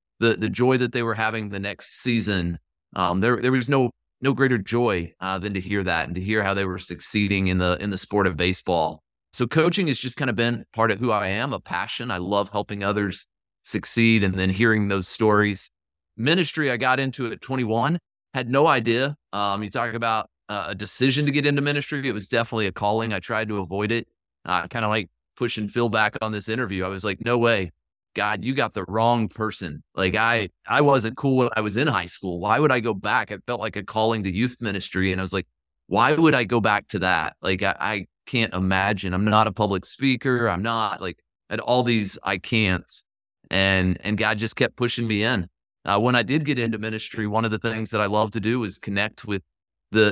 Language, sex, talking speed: English, male, 235 wpm